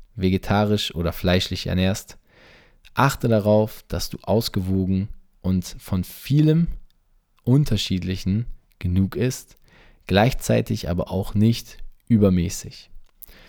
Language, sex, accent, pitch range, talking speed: German, male, German, 95-115 Hz, 90 wpm